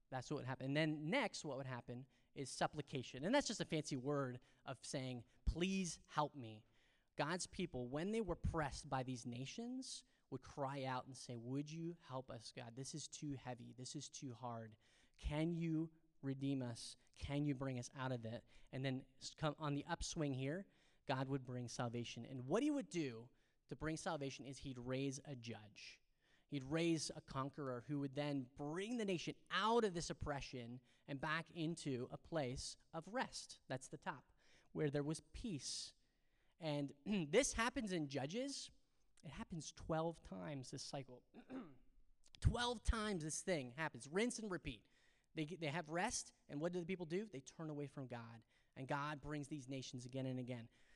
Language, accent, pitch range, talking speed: English, American, 130-170 Hz, 185 wpm